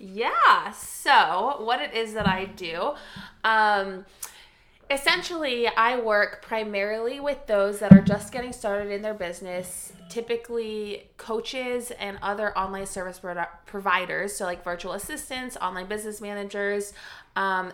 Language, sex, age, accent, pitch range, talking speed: English, female, 20-39, American, 180-215 Hz, 130 wpm